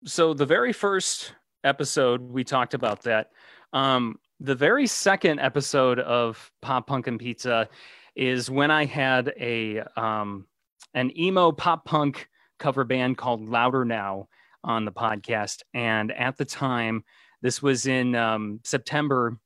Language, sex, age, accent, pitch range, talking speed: English, male, 30-49, American, 110-135 Hz, 140 wpm